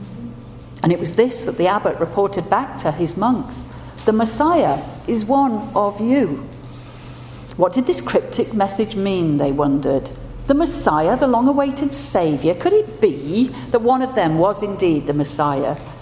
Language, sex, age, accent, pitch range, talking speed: English, female, 50-69, British, 150-220 Hz, 155 wpm